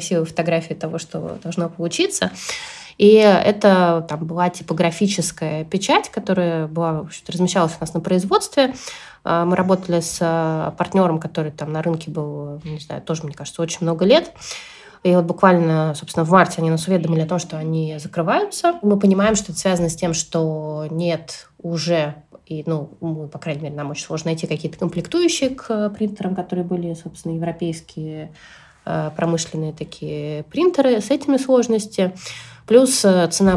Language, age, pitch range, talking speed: Russian, 20-39, 165-190 Hz, 150 wpm